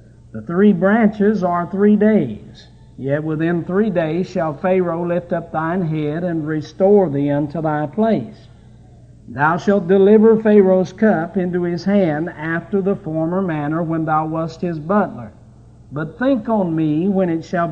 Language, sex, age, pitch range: English, male, 60-79, 145-195 Hz